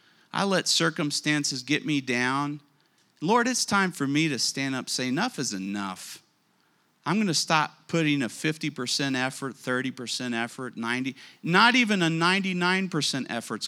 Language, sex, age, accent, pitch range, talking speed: English, male, 40-59, American, 130-175 Hz, 165 wpm